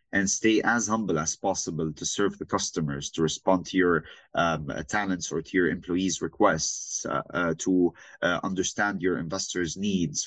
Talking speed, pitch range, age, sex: 170 wpm, 90-115 Hz, 30-49, male